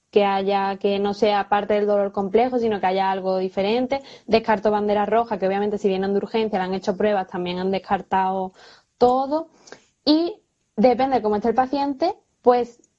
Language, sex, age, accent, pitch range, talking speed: Spanish, female, 10-29, Spanish, 205-240 Hz, 180 wpm